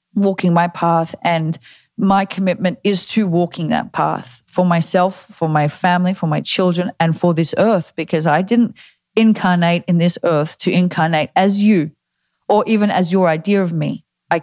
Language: English